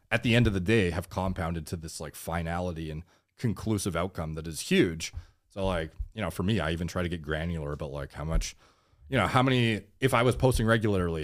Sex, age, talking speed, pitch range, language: male, 30-49, 230 wpm, 80-100 Hz, English